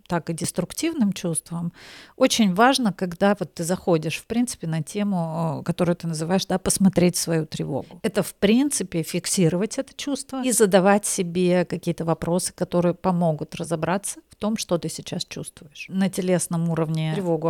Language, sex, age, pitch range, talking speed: Russian, female, 50-69, 170-210 Hz, 145 wpm